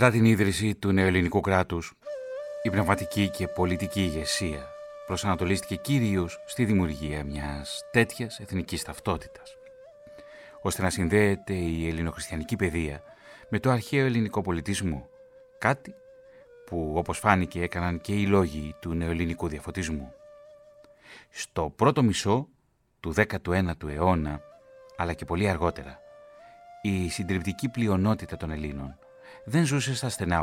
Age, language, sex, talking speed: 30-49, Greek, male, 120 wpm